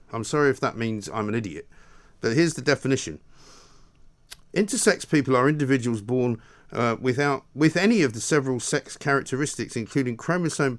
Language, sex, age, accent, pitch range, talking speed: English, male, 50-69, British, 110-155 Hz, 155 wpm